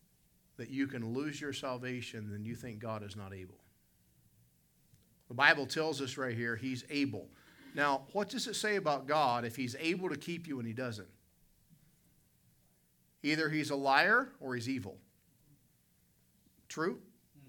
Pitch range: 125-180 Hz